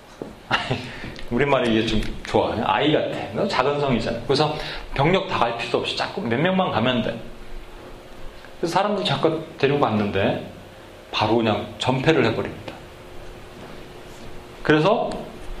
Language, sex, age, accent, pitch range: Korean, male, 30-49, native, 115-180 Hz